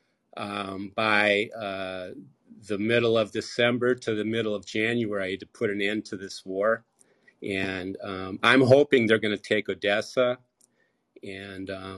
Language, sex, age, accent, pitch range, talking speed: English, male, 40-59, American, 100-120 Hz, 145 wpm